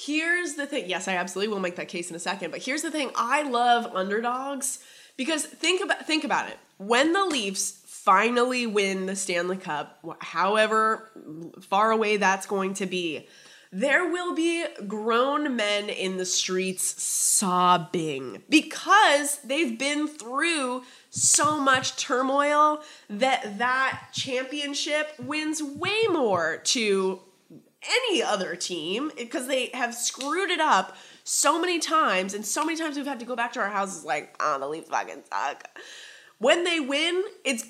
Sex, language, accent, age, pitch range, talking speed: female, English, American, 20-39, 195-290 Hz, 155 wpm